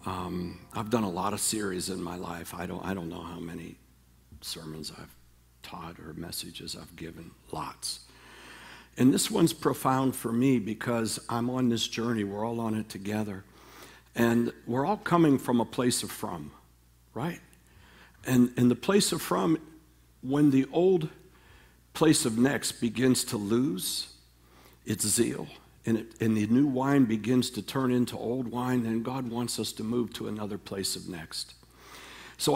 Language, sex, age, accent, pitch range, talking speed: English, male, 60-79, American, 105-150 Hz, 170 wpm